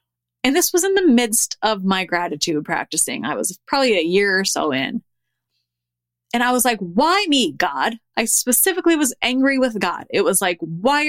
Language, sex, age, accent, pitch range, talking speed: English, female, 30-49, American, 170-275 Hz, 190 wpm